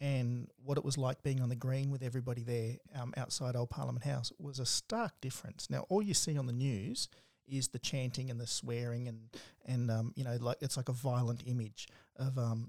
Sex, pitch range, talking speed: male, 125-150 Hz, 220 wpm